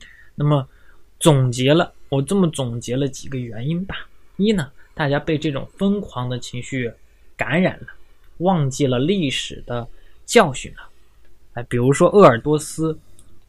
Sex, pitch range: male, 120-160 Hz